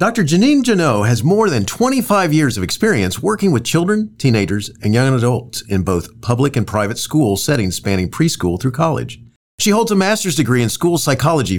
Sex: male